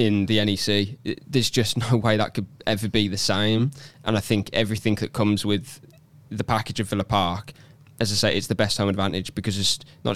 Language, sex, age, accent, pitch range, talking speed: English, male, 10-29, British, 100-120 Hz, 215 wpm